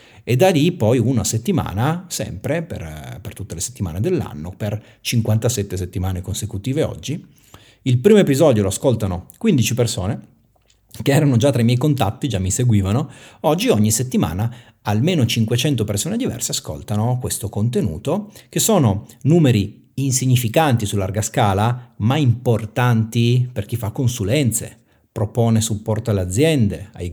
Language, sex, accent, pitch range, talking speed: Italian, male, native, 105-140 Hz, 140 wpm